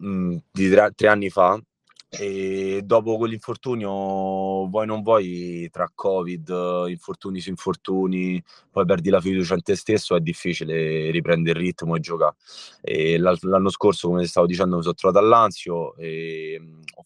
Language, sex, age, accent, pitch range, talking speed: Italian, male, 20-39, native, 90-115 Hz, 145 wpm